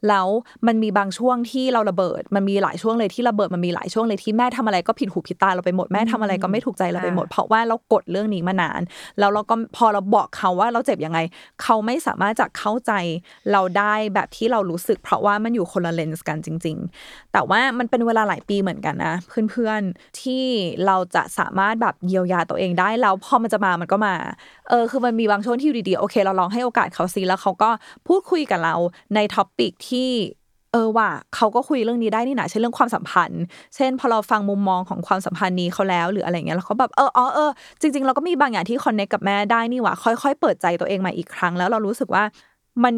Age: 20-39